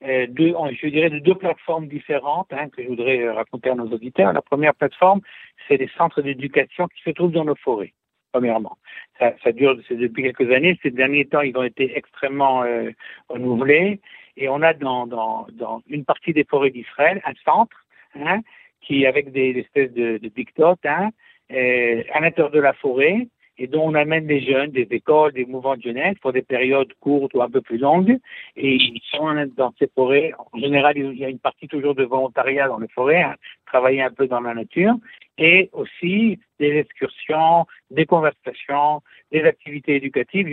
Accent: French